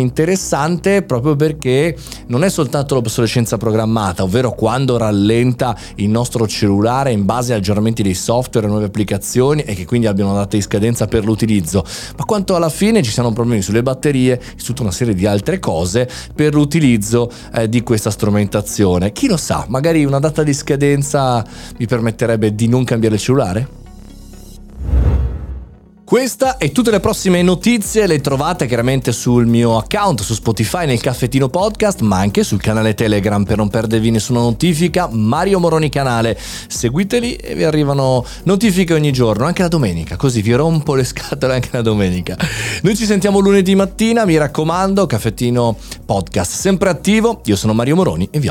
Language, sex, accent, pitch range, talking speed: Italian, male, native, 110-155 Hz, 170 wpm